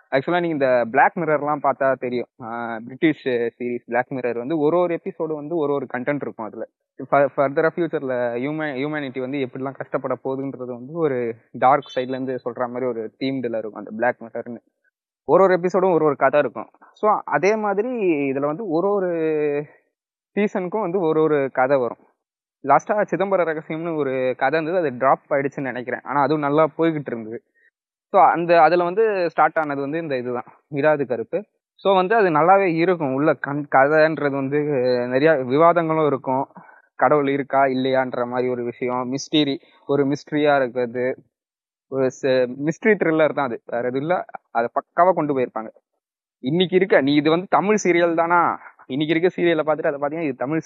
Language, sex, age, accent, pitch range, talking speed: Tamil, male, 20-39, native, 130-165 Hz, 160 wpm